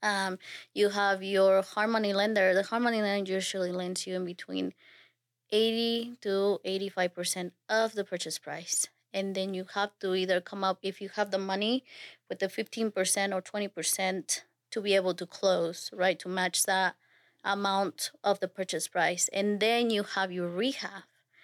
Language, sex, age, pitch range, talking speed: English, female, 20-39, 185-200 Hz, 175 wpm